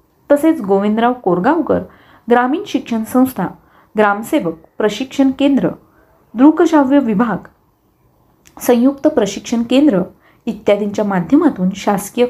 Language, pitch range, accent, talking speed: Marathi, 200-265 Hz, native, 85 wpm